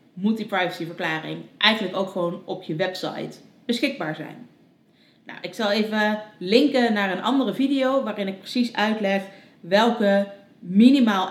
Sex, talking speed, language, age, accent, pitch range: female, 135 wpm, Dutch, 30-49, Dutch, 180-235 Hz